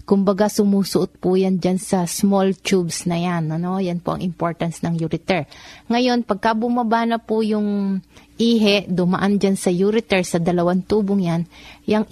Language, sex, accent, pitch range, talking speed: Filipino, female, native, 180-205 Hz, 165 wpm